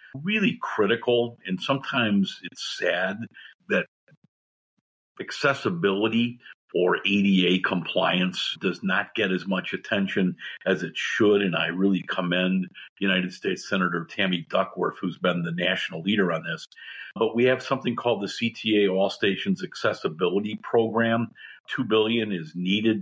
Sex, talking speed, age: male, 135 wpm, 50-69